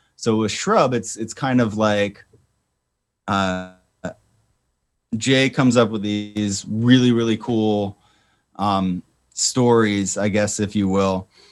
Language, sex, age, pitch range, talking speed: English, male, 30-49, 100-115 Hz, 125 wpm